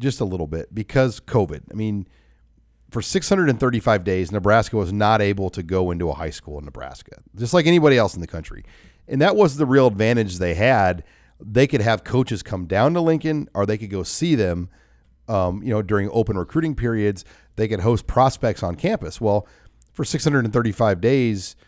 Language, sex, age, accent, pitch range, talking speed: English, male, 40-59, American, 90-115 Hz, 190 wpm